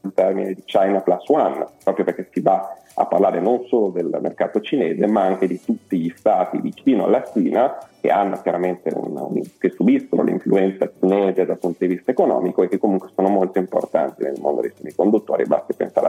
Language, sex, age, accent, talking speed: Italian, male, 40-59, native, 180 wpm